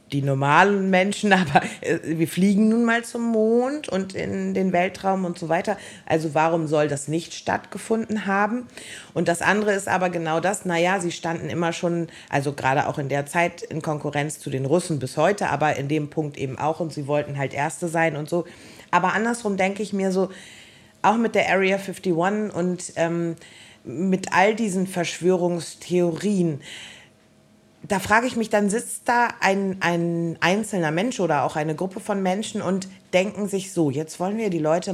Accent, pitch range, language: German, 155-195 Hz, German